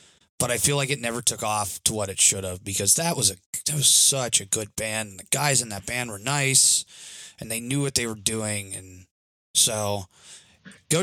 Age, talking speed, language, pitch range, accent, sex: 20-39, 220 wpm, English, 100-125 Hz, American, male